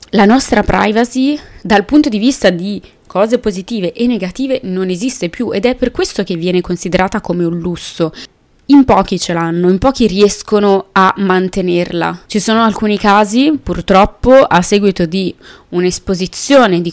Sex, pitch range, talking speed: female, 185-235 Hz, 155 wpm